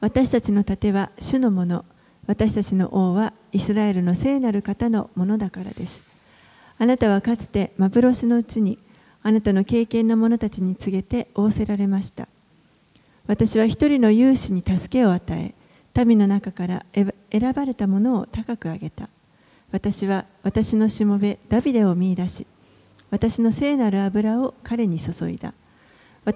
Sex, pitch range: female, 190-230 Hz